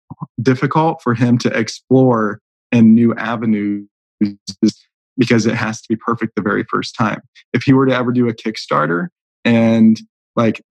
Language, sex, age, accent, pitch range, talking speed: English, male, 20-39, American, 110-125 Hz, 155 wpm